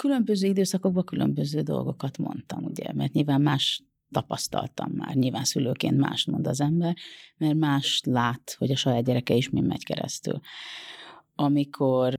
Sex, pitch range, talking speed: female, 130-165 Hz, 145 wpm